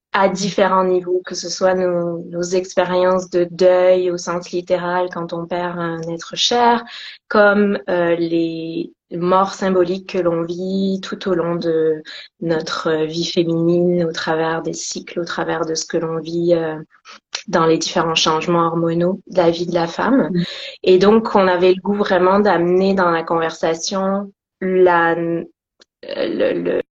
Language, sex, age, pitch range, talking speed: French, female, 20-39, 170-195 Hz, 160 wpm